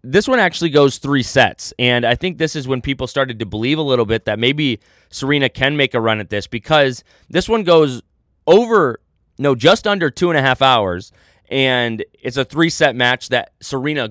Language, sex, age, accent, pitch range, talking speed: English, male, 20-39, American, 115-150 Hz, 205 wpm